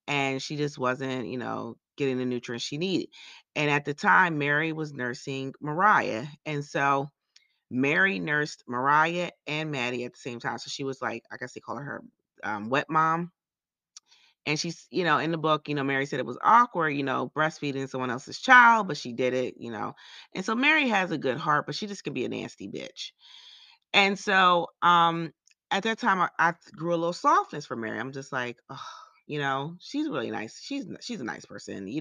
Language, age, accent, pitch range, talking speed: English, 30-49, American, 135-180 Hz, 210 wpm